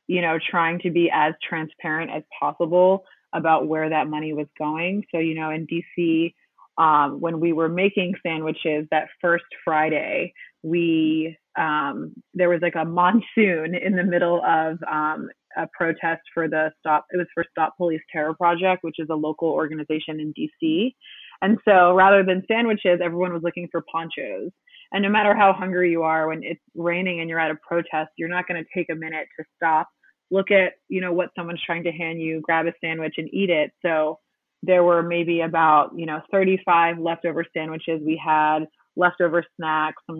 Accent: American